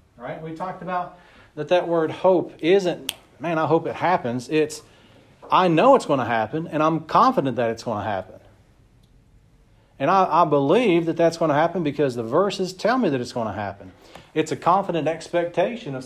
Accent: American